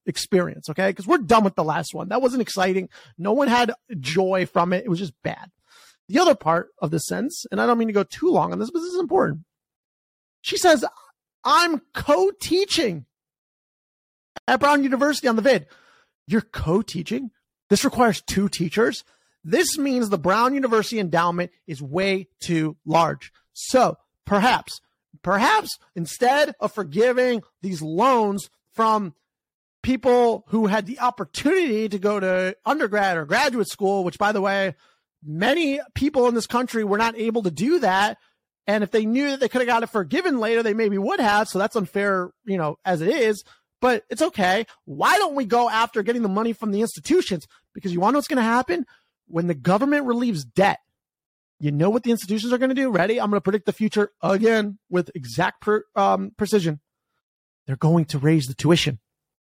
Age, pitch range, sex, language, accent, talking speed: 30-49, 185-245 Hz, male, English, American, 185 wpm